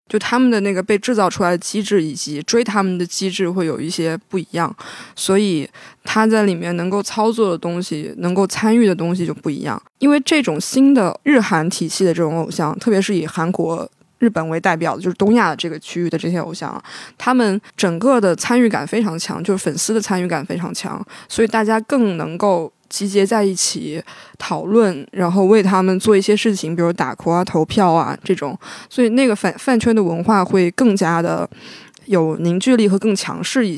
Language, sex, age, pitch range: Chinese, female, 20-39, 170-215 Hz